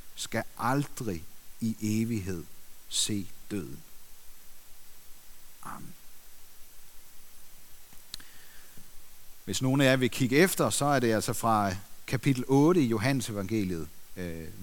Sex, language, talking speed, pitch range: male, Danish, 100 wpm, 115-170 Hz